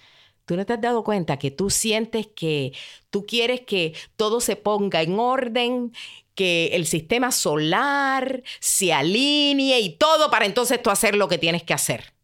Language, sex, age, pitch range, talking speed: Spanish, female, 50-69, 160-240 Hz, 170 wpm